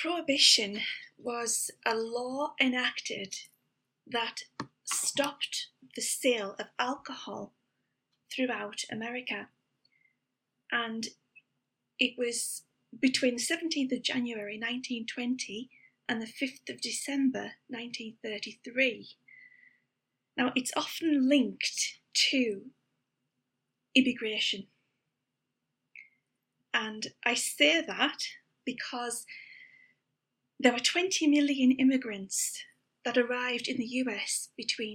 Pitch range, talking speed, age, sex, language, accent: 225-270 Hz, 85 wpm, 30-49, female, English, British